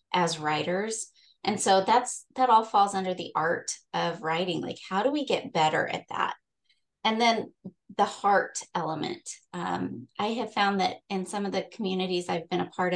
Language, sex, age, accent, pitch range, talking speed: English, female, 20-39, American, 170-200 Hz, 185 wpm